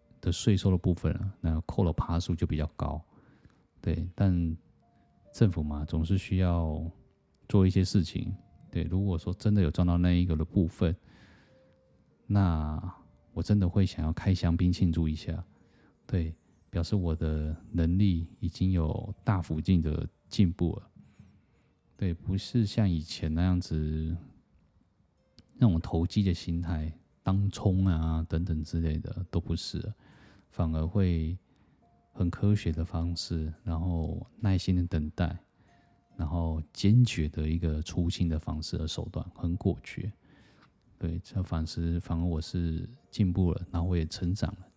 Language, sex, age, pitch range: Chinese, male, 20-39, 80-100 Hz